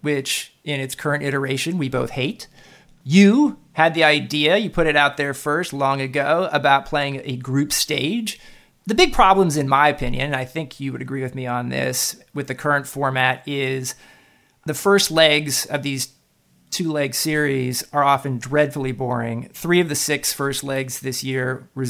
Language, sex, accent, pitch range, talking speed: English, male, American, 130-150 Hz, 180 wpm